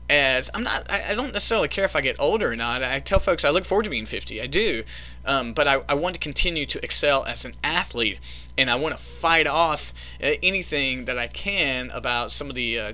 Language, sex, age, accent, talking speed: English, male, 30-49, American, 240 wpm